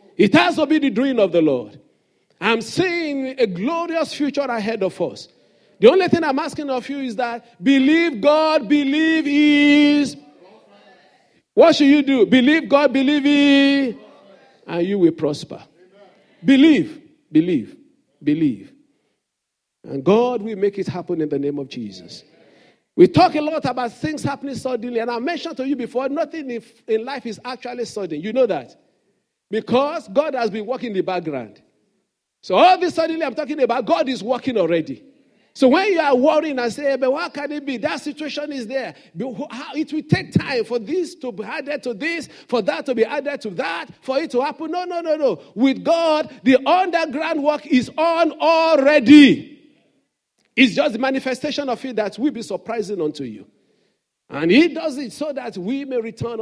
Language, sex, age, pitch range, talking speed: English, male, 50-69, 235-305 Hz, 180 wpm